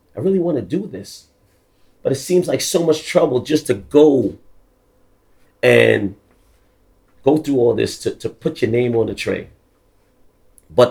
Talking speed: 165 wpm